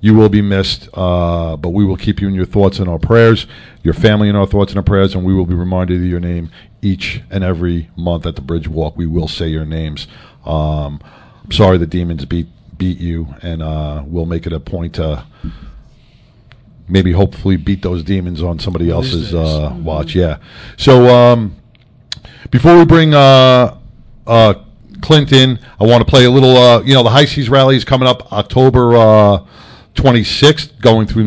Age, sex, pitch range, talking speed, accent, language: 50-69, male, 90-135 Hz, 195 wpm, American, English